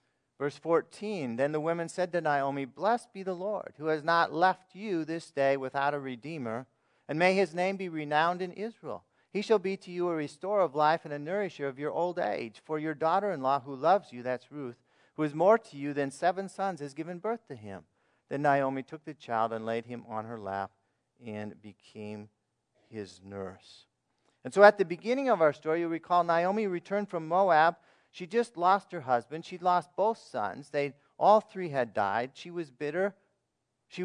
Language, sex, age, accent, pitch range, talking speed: English, male, 40-59, American, 125-180 Hz, 200 wpm